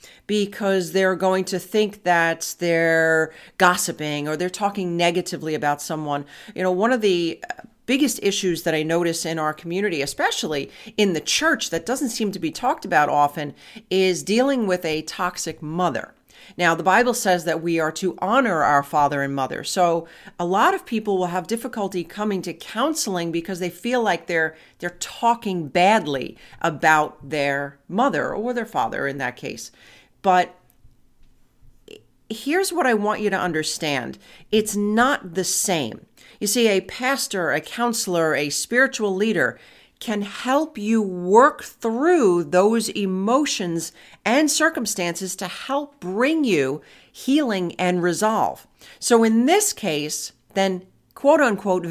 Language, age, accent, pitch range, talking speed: English, 40-59, American, 165-230 Hz, 150 wpm